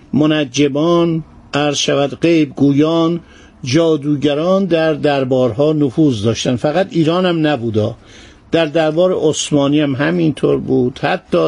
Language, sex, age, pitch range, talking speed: Persian, male, 50-69, 130-170 Hz, 105 wpm